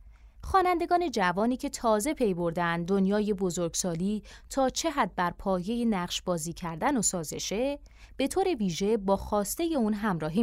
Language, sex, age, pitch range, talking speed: Persian, female, 30-49, 180-235 Hz, 145 wpm